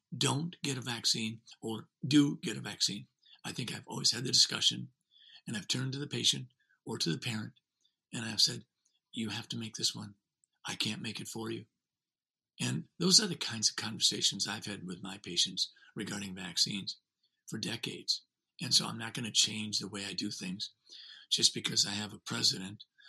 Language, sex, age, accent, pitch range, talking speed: English, male, 50-69, American, 105-150 Hz, 195 wpm